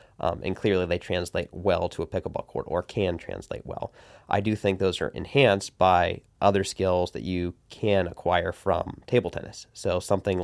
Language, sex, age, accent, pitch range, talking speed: English, male, 30-49, American, 90-100 Hz, 185 wpm